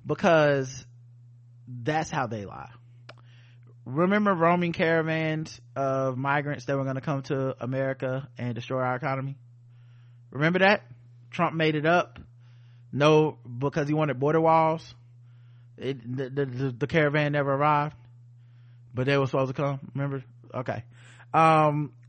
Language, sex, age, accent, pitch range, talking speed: English, male, 20-39, American, 120-155 Hz, 135 wpm